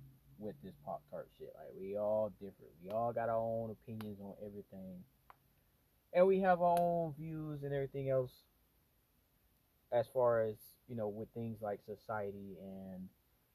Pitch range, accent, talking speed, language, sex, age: 95-120 Hz, American, 155 wpm, English, male, 20-39